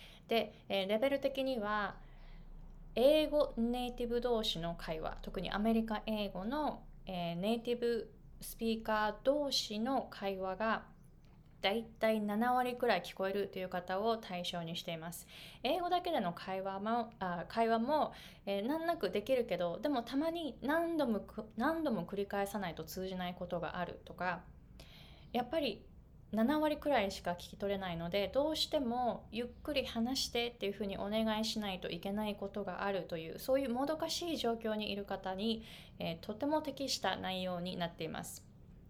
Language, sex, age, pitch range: Japanese, female, 20-39, 185-250 Hz